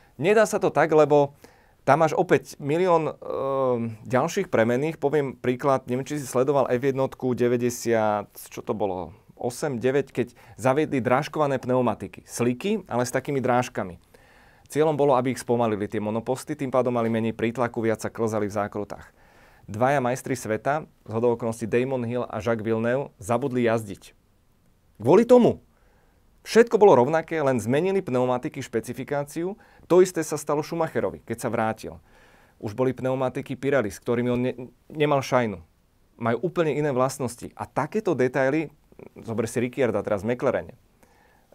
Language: Slovak